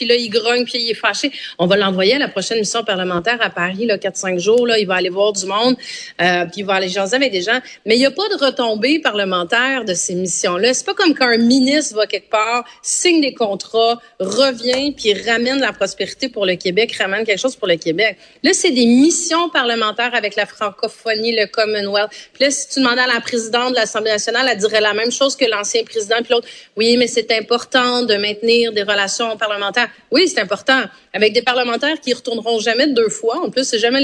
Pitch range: 210-255 Hz